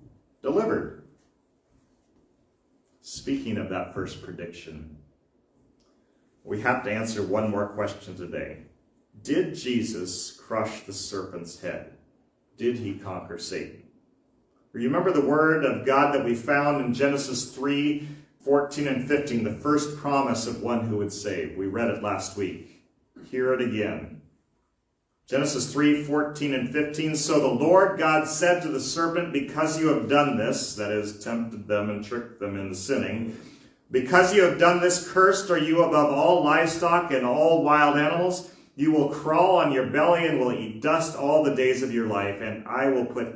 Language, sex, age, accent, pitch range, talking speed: English, male, 40-59, American, 105-150 Hz, 160 wpm